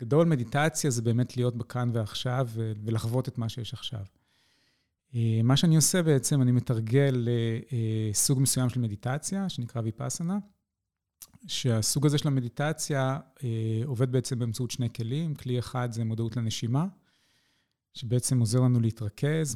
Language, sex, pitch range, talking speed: Hebrew, male, 115-145 Hz, 130 wpm